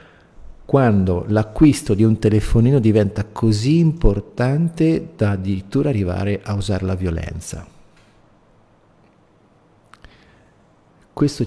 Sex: male